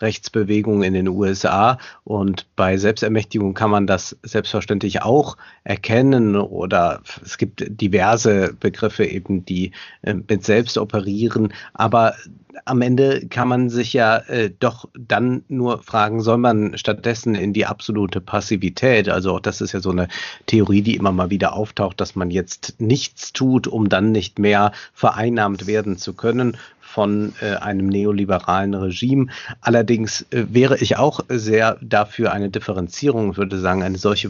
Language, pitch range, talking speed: German, 100-115 Hz, 150 wpm